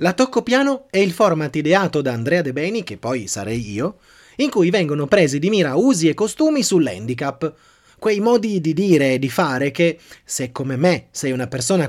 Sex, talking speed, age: male, 195 wpm, 30-49